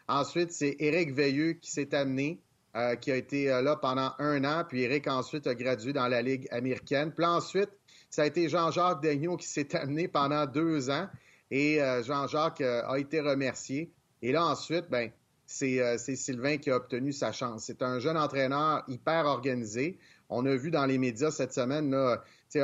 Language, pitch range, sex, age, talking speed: French, 125-150 Hz, male, 30-49, 195 wpm